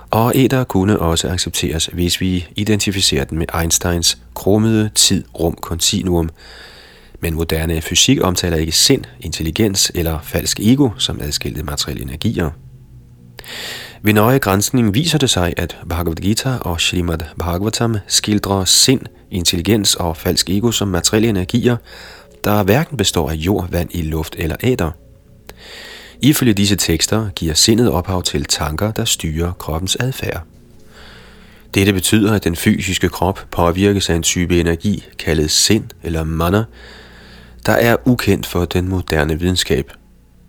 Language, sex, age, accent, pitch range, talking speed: Danish, male, 30-49, native, 85-110 Hz, 135 wpm